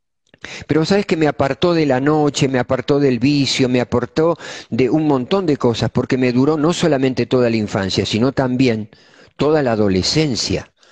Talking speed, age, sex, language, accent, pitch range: 175 wpm, 50-69, male, Spanish, Argentinian, 120-155 Hz